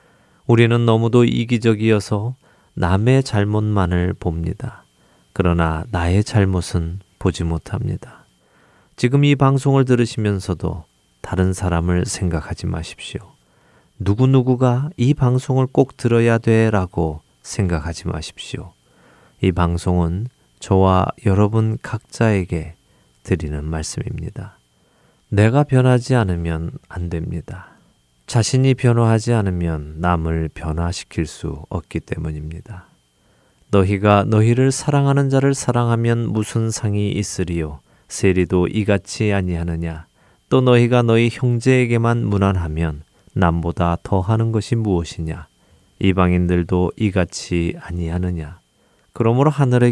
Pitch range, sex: 85-115 Hz, male